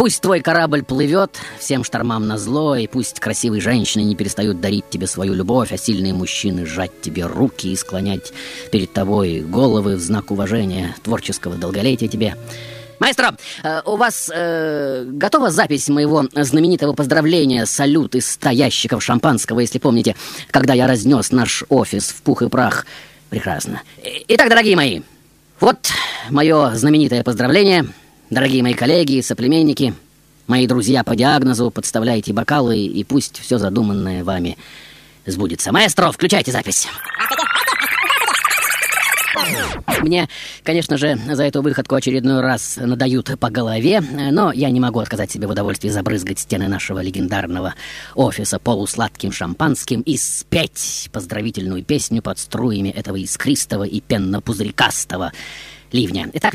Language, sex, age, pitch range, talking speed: Russian, female, 20-39, 105-145 Hz, 135 wpm